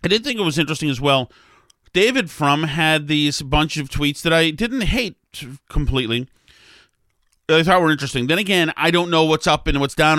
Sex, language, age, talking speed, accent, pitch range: male, English, 40-59, 200 wpm, American, 130-165 Hz